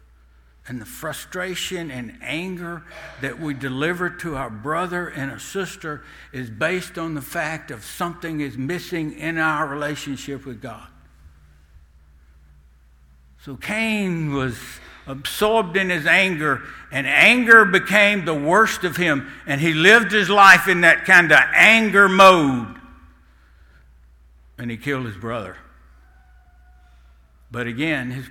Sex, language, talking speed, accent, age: male, English, 130 wpm, American, 60-79